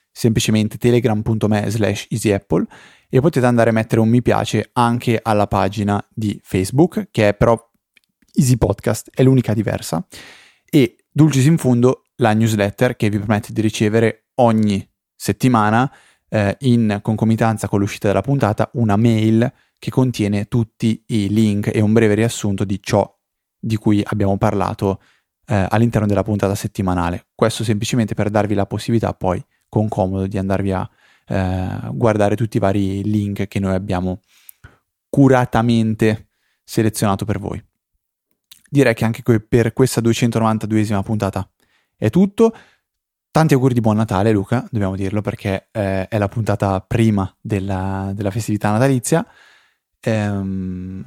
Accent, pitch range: native, 100-120 Hz